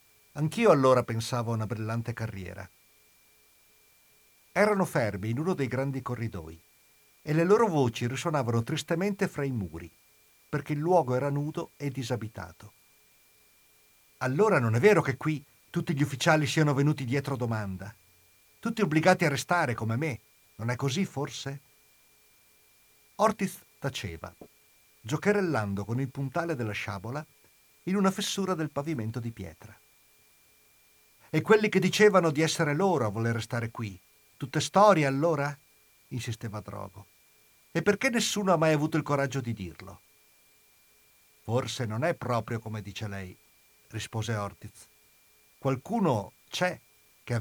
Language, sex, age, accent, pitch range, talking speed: Italian, male, 50-69, native, 110-155 Hz, 135 wpm